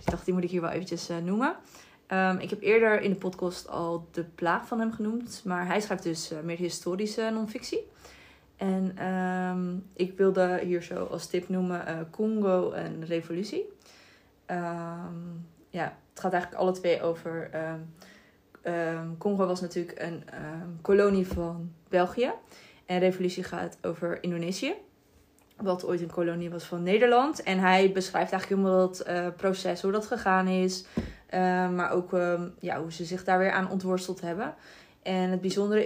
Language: Dutch